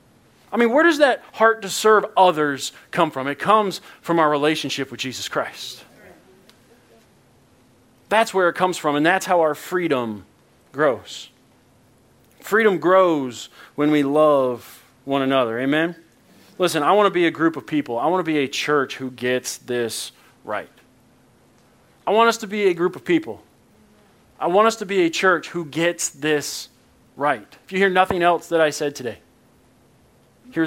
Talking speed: 170 wpm